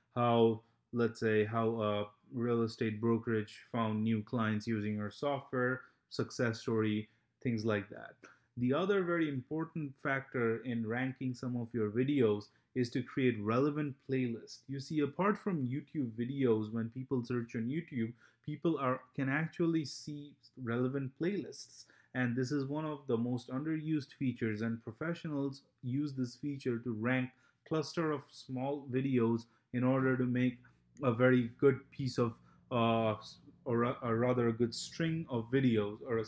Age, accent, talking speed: 30-49, Indian, 155 wpm